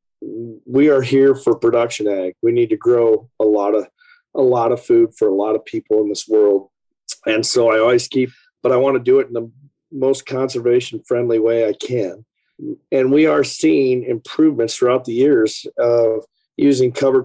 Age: 40-59